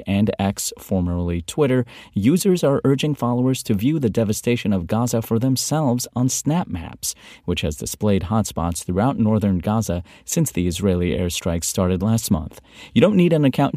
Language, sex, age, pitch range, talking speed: English, male, 30-49, 95-125 Hz, 165 wpm